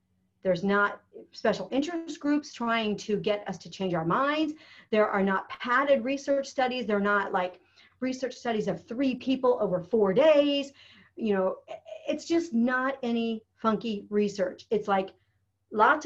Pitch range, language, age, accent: 190-255 Hz, English, 40-59, American